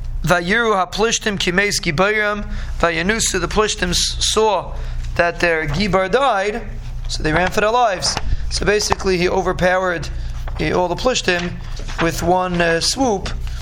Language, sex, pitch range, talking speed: English, male, 155-190 Hz, 125 wpm